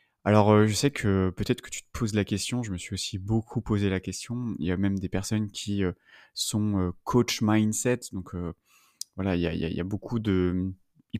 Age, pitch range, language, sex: 30-49, 95-110 Hz, French, male